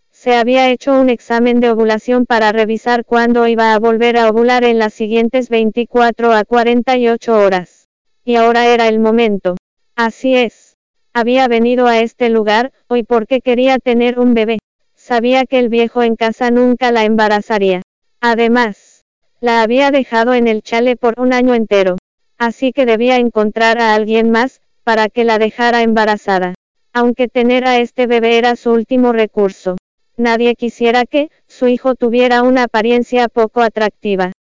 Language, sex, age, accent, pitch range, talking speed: Spanish, female, 20-39, American, 225-245 Hz, 160 wpm